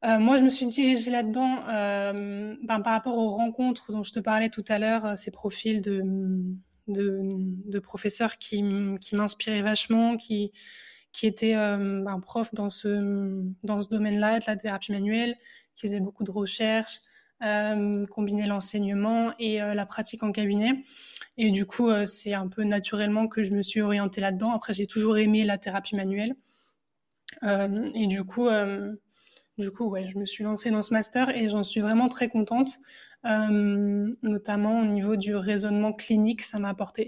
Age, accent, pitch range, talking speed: 20-39, French, 205-225 Hz, 180 wpm